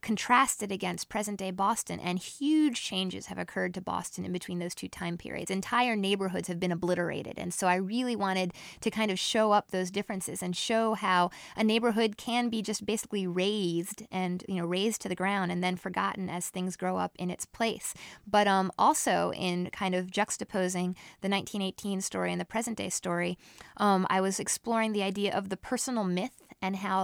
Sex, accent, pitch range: female, American, 185-220 Hz